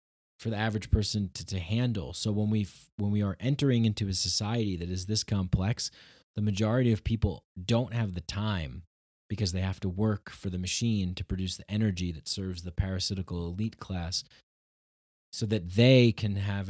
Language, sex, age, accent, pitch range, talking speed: English, male, 20-39, American, 90-110 Hz, 185 wpm